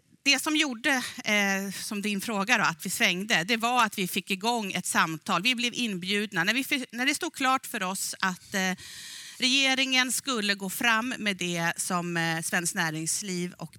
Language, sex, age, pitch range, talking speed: Swedish, female, 40-59, 170-220 Hz, 165 wpm